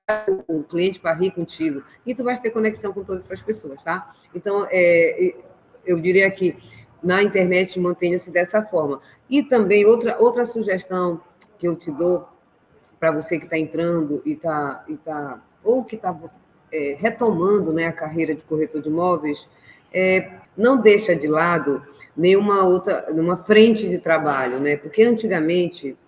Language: Portuguese